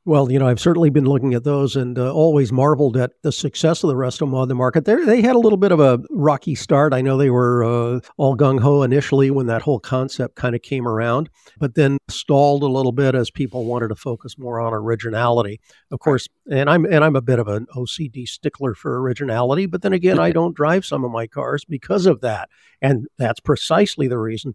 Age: 60-79